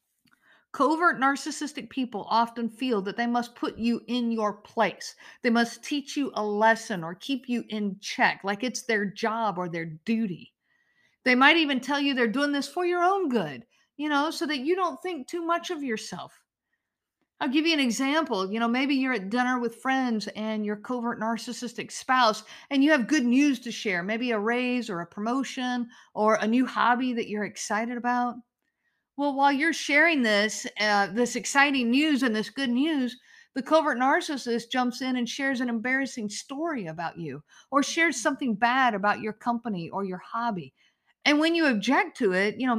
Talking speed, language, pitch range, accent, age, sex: 190 wpm, English, 215-275 Hz, American, 50-69, female